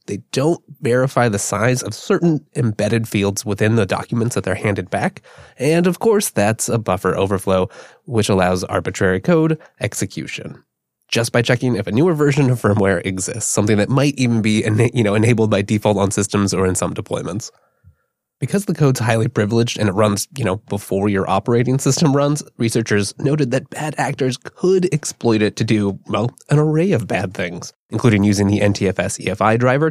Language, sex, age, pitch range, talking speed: English, male, 20-39, 100-135 Hz, 180 wpm